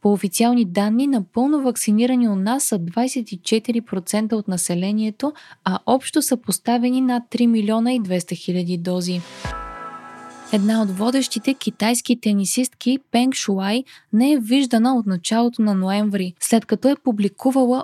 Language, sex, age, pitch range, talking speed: Bulgarian, female, 20-39, 195-250 Hz, 135 wpm